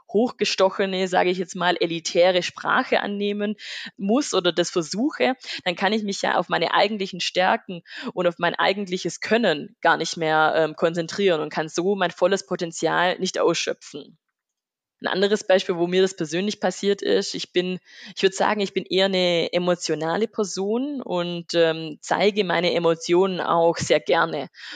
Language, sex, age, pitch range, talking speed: German, female, 20-39, 170-210 Hz, 160 wpm